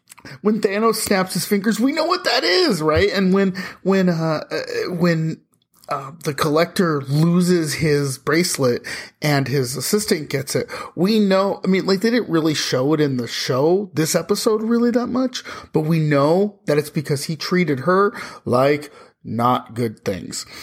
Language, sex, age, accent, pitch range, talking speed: English, male, 30-49, American, 140-185 Hz, 170 wpm